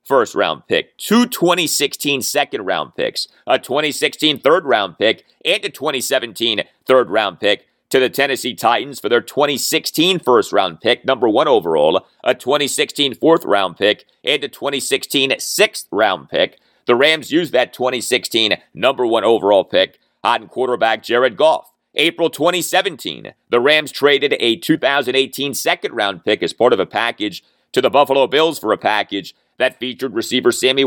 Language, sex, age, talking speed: English, male, 30-49, 160 wpm